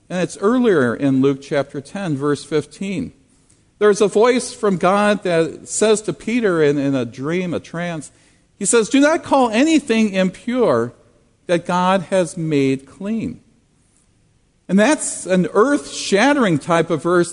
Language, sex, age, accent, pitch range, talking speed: English, male, 50-69, American, 155-210 Hz, 150 wpm